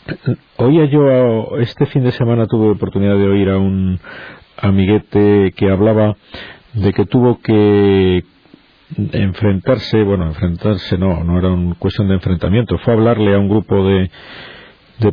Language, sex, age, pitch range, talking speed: Spanish, male, 40-59, 100-125 Hz, 155 wpm